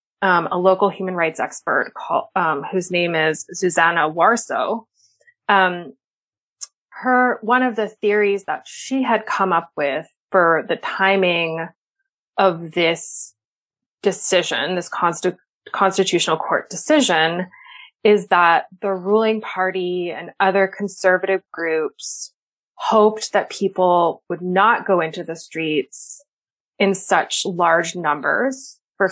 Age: 20-39